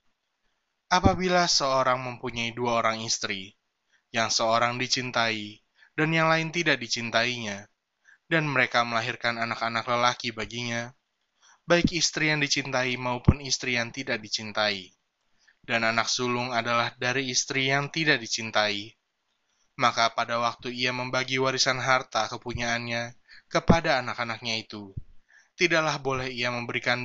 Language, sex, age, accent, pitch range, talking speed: Indonesian, male, 20-39, native, 115-135 Hz, 120 wpm